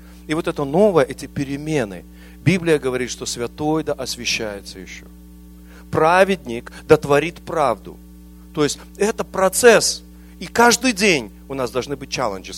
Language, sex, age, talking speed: English, male, 40-59, 140 wpm